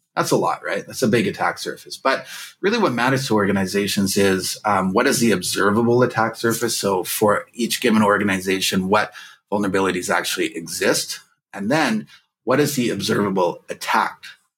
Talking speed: 160 wpm